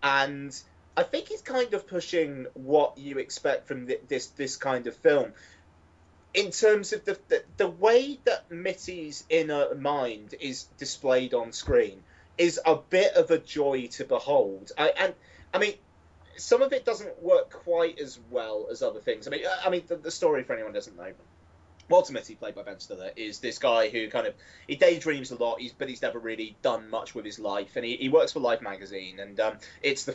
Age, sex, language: 20-39, male, English